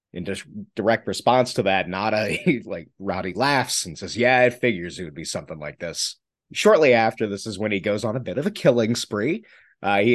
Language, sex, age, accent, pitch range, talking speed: English, male, 30-49, American, 95-125 Hz, 225 wpm